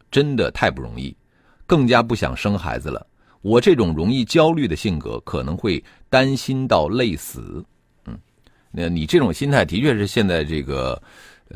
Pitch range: 80-130 Hz